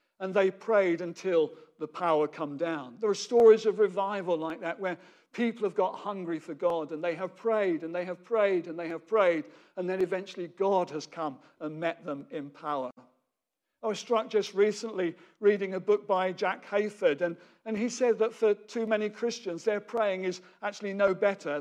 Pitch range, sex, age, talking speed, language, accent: 175-215 Hz, male, 50-69, 195 wpm, English, British